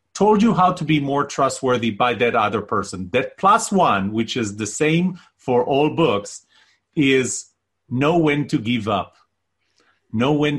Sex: male